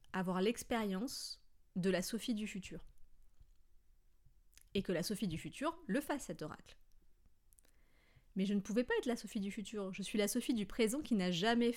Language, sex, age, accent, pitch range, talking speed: French, female, 30-49, French, 170-215 Hz, 185 wpm